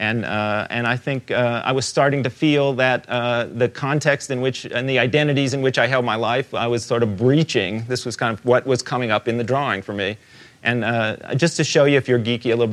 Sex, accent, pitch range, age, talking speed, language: male, American, 105-130 Hz, 40-59, 260 wpm, English